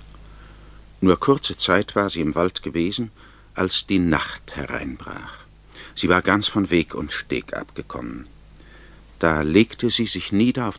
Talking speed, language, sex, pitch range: 145 wpm, German, male, 90-115 Hz